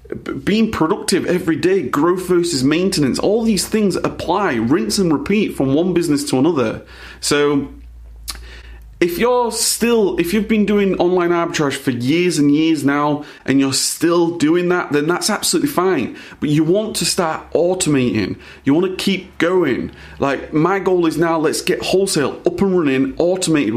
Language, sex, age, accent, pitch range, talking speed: English, male, 30-49, British, 140-185 Hz, 165 wpm